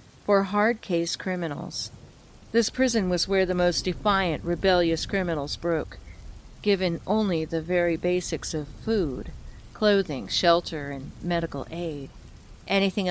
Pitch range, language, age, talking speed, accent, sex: 160-195 Hz, English, 40-59, 125 wpm, American, female